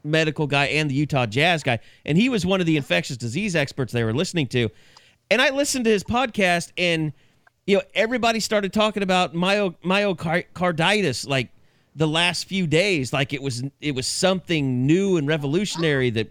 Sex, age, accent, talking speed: male, 40-59, American, 180 wpm